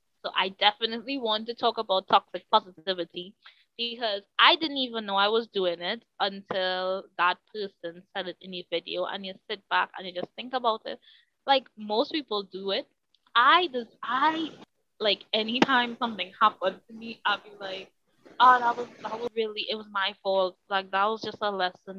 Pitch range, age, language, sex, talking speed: 185-225 Hz, 20-39, English, female, 190 wpm